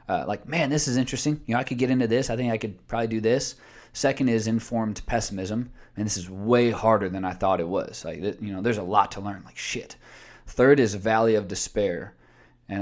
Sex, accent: male, American